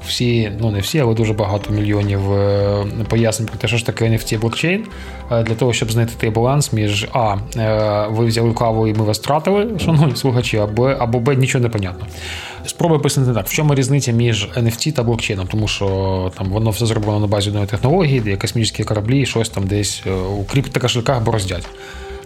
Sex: male